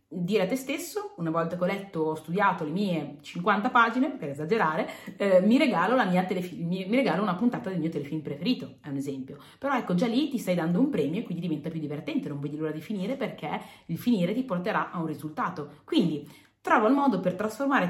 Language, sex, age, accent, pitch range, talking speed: Italian, female, 30-49, native, 155-210 Hz, 230 wpm